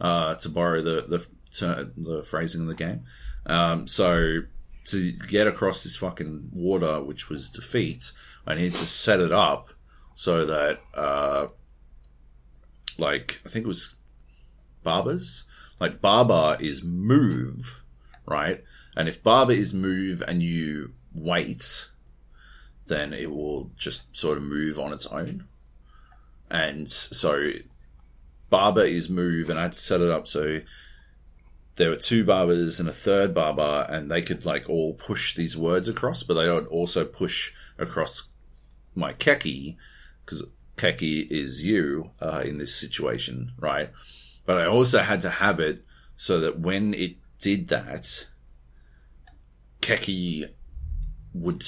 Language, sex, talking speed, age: English, male, 140 wpm, 30-49